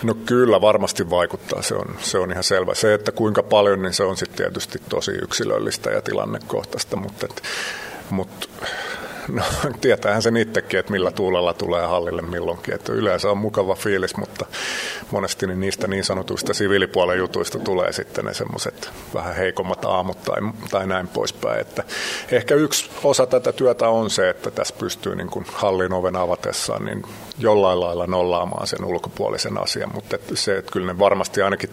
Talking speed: 170 wpm